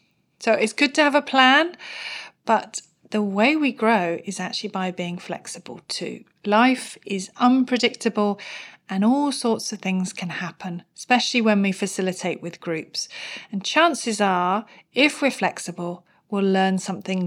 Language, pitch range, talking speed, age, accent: English, 185-240 Hz, 150 wpm, 40-59, British